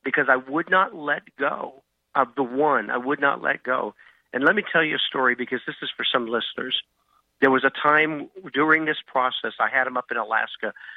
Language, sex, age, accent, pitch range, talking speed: English, male, 50-69, American, 115-135 Hz, 220 wpm